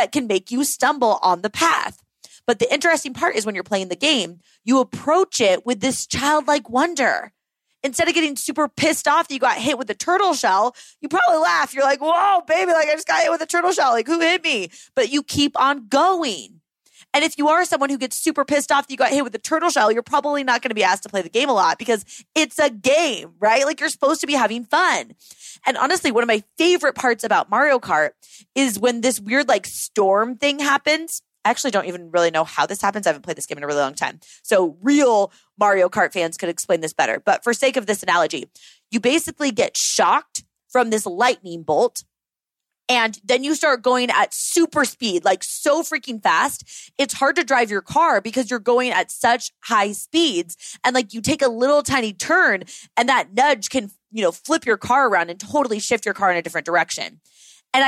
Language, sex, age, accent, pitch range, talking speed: English, female, 20-39, American, 210-300 Hz, 225 wpm